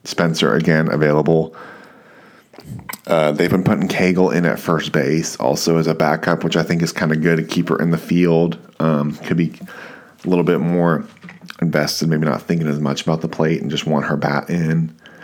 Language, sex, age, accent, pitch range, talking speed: English, male, 30-49, American, 80-85 Hz, 200 wpm